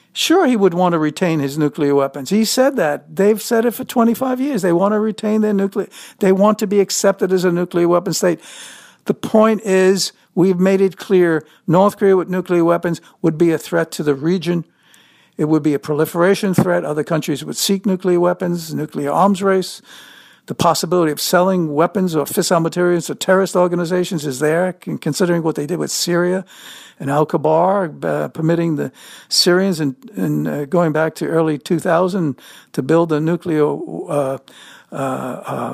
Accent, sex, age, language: American, male, 60-79, English